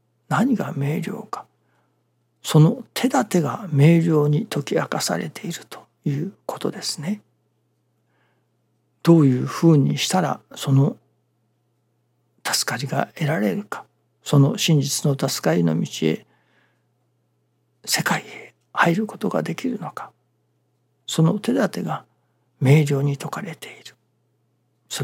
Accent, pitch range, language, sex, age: native, 135-205 Hz, Japanese, male, 60-79